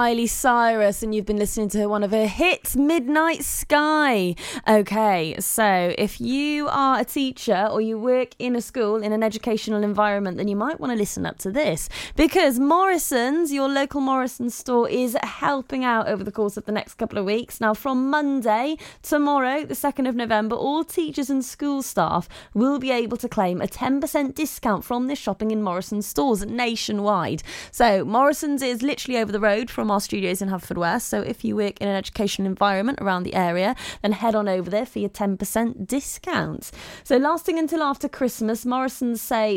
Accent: British